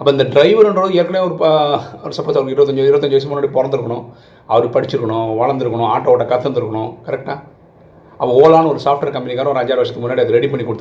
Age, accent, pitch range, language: 30-49, native, 110-160 Hz, Tamil